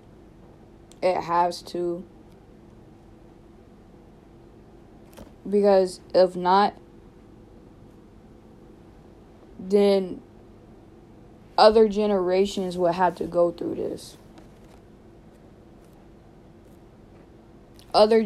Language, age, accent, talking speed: English, 20-39, American, 55 wpm